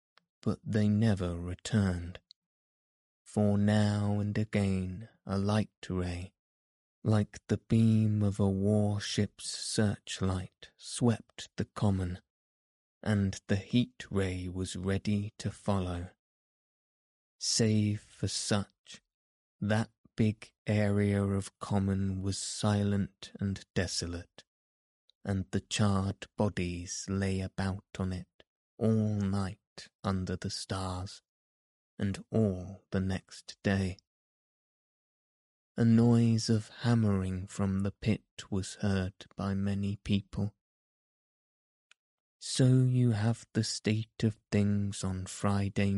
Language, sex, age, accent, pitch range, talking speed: English, male, 20-39, British, 95-110 Hz, 105 wpm